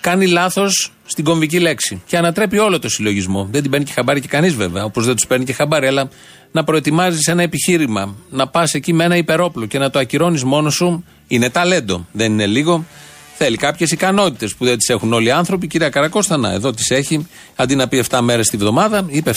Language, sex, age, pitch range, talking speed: Greek, male, 40-59, 115-160 Hz, 215 wpm